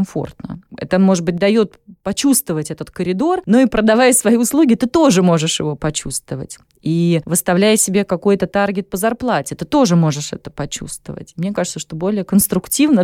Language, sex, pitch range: Russian, female, 165-220 Hz